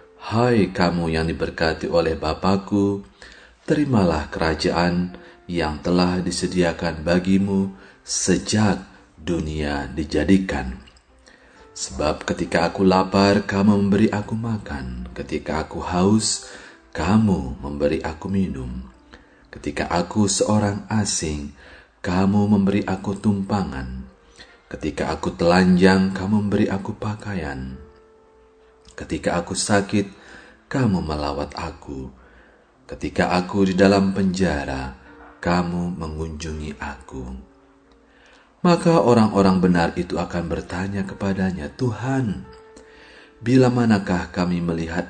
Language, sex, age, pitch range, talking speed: Indonesian, male, 30-49, 80-100 Hz, 95 wpm